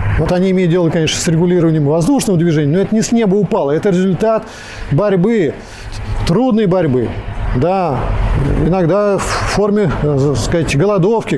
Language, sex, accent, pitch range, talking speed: Russian, male, native, 145-195 Hz, 140 wpm